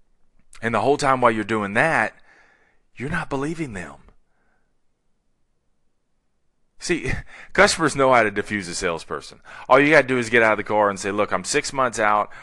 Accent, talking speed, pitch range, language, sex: American, 185 wpm, 95-130 Hz, English, male